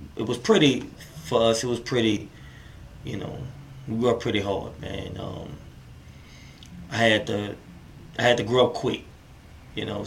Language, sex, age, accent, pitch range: Japanese, male, 20-39, American, 105-120 Hz